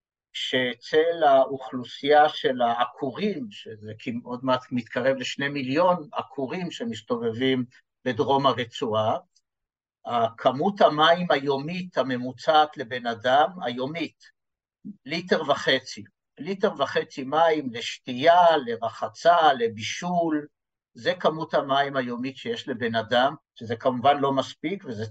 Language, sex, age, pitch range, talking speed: Hebrew, male, 60-79, 130-195 Hz, 100 wpm